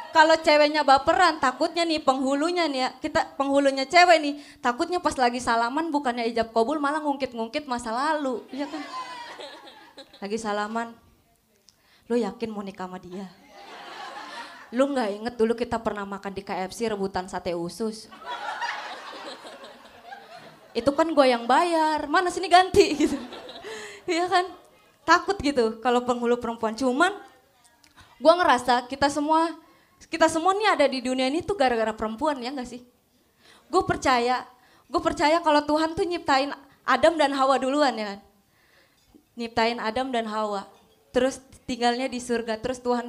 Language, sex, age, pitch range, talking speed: Indonesian, female, 20-39, 225-300 Hz, 145 wpm